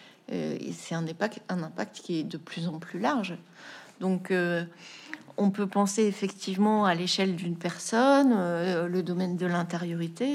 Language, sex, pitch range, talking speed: French, female, 170-215 Hz, 160 wpm